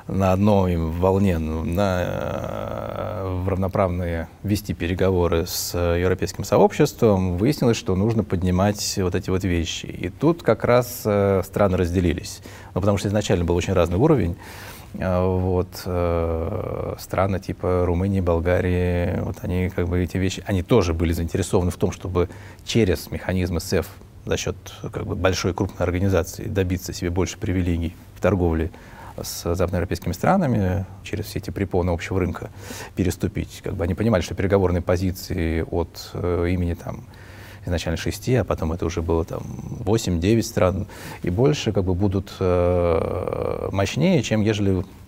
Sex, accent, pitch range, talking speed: male, native, 90-105 Hz, 140 wpm